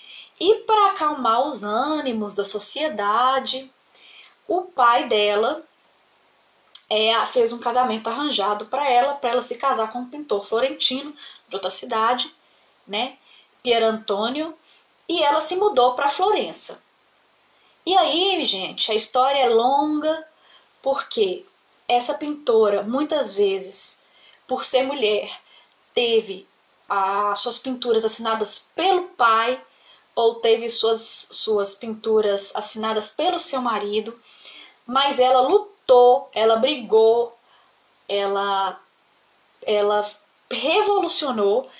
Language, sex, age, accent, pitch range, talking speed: Portuguese, female, 10-29, Brazilian, 215-310 Hz, 105 wpm